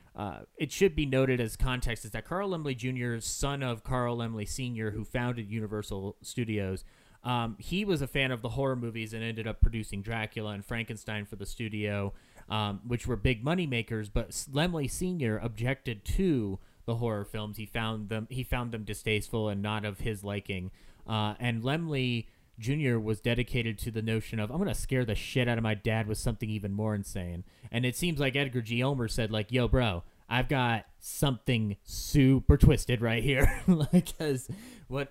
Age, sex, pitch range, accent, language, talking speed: 30-49, male, 110-130 Hz, American, English, 190 wpm